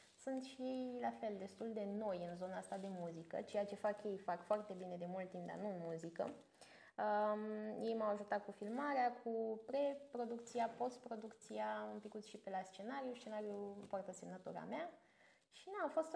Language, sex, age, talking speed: Romanian, female, 20-39, 185 wpm